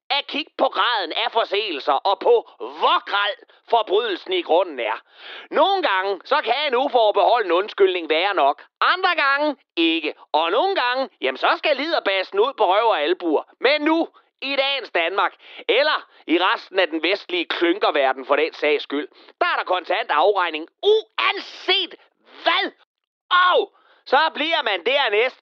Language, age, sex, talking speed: Danish, 30-49, male, 155 wpm